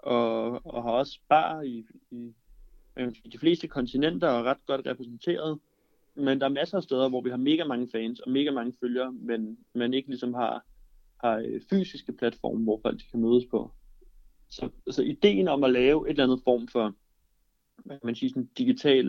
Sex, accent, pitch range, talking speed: male, native, 120-145 Hz, 190 wpm